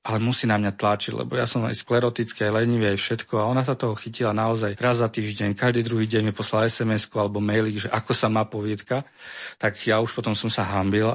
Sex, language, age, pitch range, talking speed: male, Slovak, 40-59, 100-115 Hz, 225 wpm